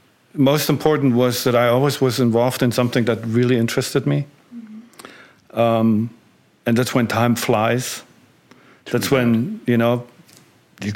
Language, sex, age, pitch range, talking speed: German, male, 50-69, 110-130 Hz, 135 wpm